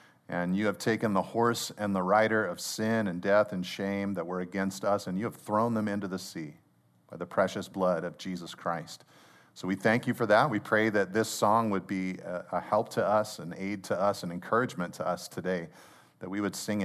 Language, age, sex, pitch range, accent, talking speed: English, 40-59, male, 95-125 Hz, American, 230 wpm